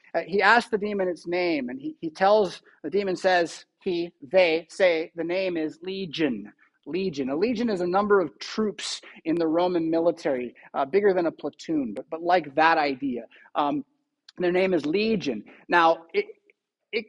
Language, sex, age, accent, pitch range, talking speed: English, male, 30-49, American, 175-235 Hz, 175 wpm